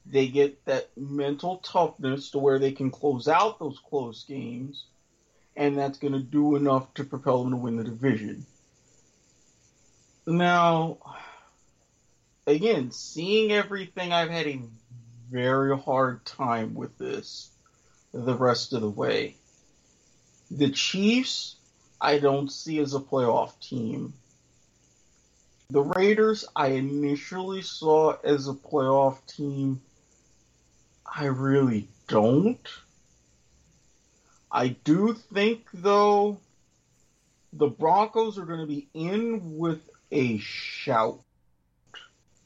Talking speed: 110 wpm